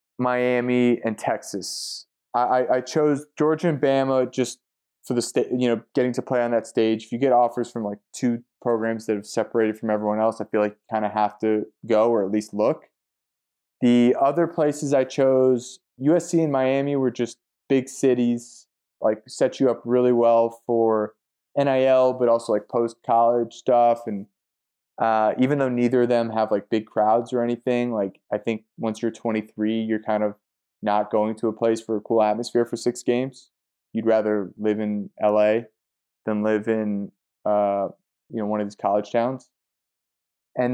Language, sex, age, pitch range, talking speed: English, male, 20-39, 110-125 Hz, 185 wpm